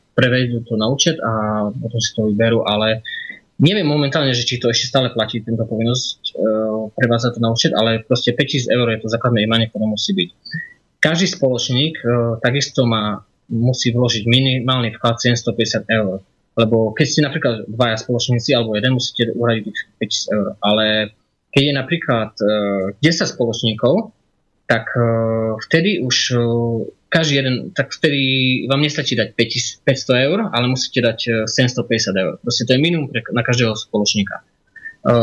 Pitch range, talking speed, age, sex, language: 110-135 Hz, 155 wpm, 20-39, male, Slovak